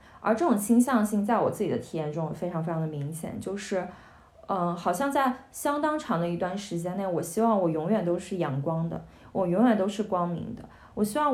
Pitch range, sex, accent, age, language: 170-220 Hz, female, native, 20-39, Chinese